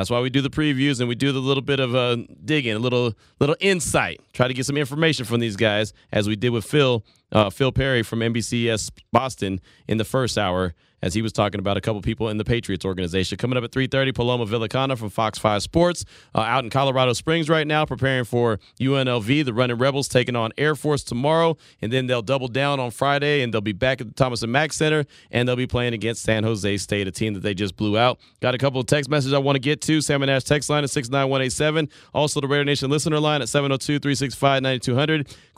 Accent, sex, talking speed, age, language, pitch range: American, male, 235 wpm, 30-49, English, 115-145 Hz